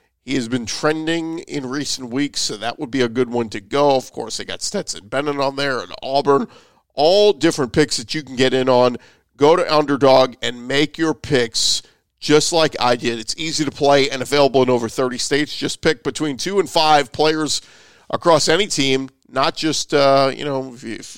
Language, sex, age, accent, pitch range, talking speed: English, male, 40-59, American, 130-160 Hz, 205 wpm